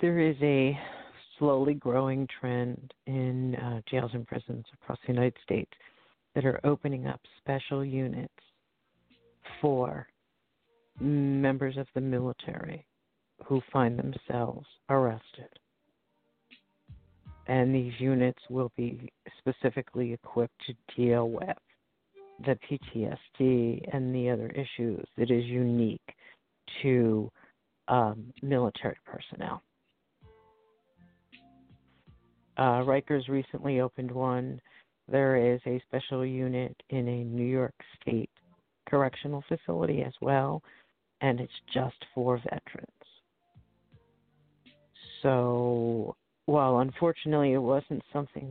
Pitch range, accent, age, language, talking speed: 120-135 Hz, American, 50-69, English, 105 wpm